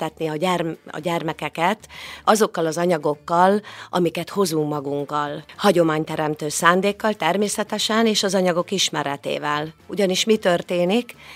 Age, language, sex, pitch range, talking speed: 40-59, Hungarian, female, 155-200 Hz, 105 wpm